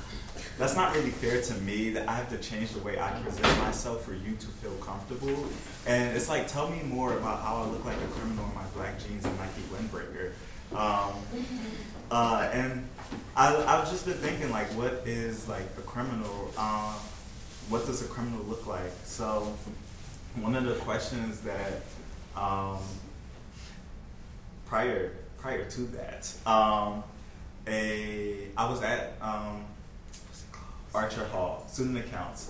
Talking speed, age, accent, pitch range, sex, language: 155 wpm, 20-39, American, 95-115 Hz, male, English